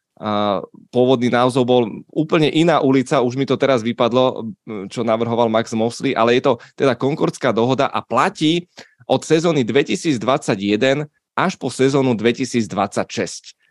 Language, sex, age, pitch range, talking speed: Czech, male, 20-39, 120-145 Hz, 135 wpm